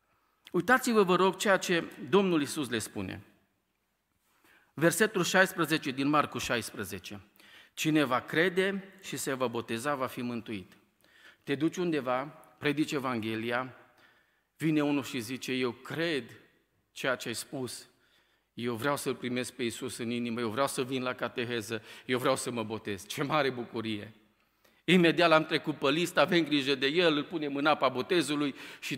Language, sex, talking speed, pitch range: Romanian, male, 160 wpm, 125-170 Hz